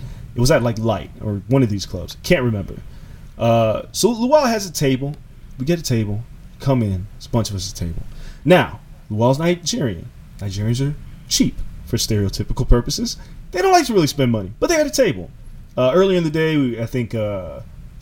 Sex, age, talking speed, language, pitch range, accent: male, 30-49, 205 wpm, English, 115-155 Hz, American